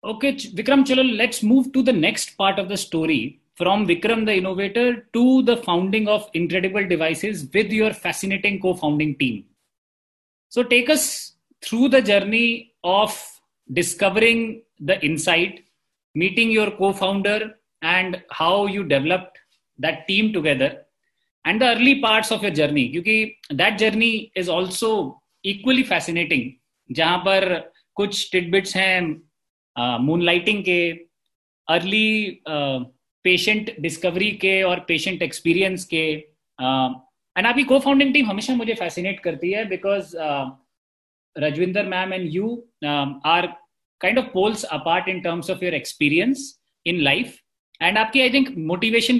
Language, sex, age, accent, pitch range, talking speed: English, male, 30-49, Indian, 170-225 Hz, 125 wpm